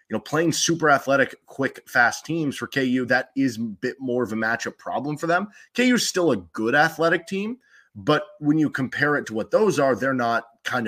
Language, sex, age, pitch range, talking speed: English, male, 20-39, 110-145 Hz, 220 wpm